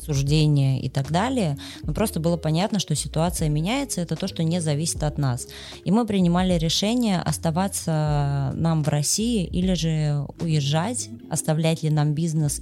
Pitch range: 145-170 Hz